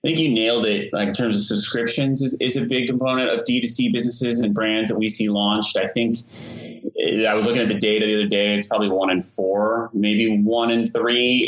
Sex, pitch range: male, 100-120 Hz